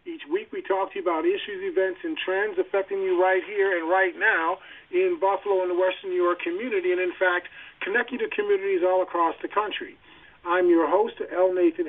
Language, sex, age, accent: English, male, 40-59, American